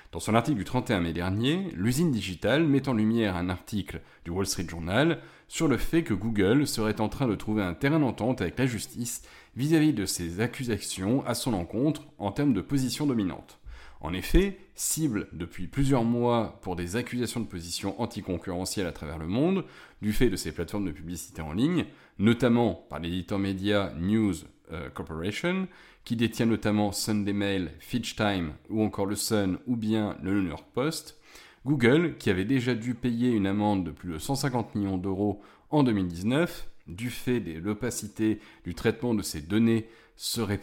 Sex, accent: male, French